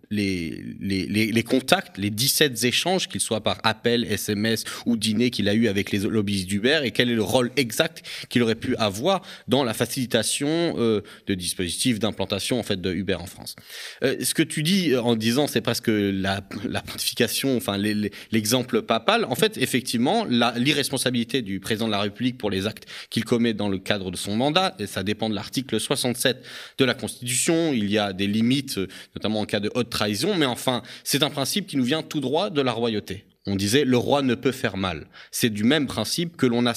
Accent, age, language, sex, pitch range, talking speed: French, 30-49, French, male, 105-135 Hz, 205 wpm